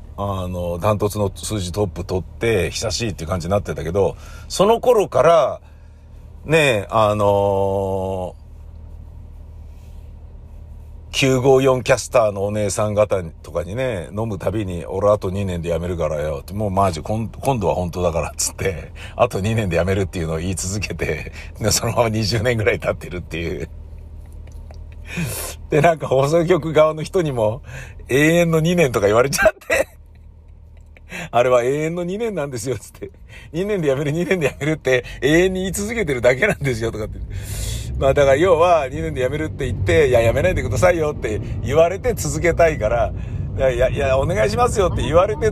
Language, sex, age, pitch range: Japanese, male, 50-69, 85-130 Hz